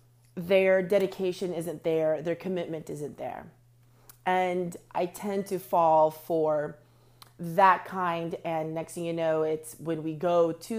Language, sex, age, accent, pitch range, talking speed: English, female, 30-49, American, 125-185 Hz, 145 wpm